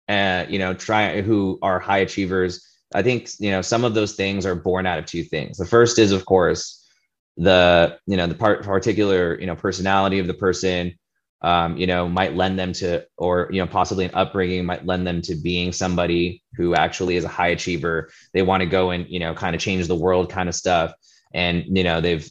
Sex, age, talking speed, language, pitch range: male, 20-39, 220 wpm, English, 85-100 Hz